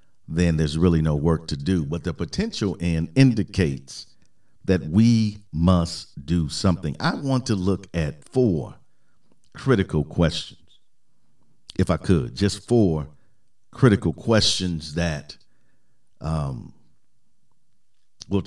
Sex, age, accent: male, 50-69, American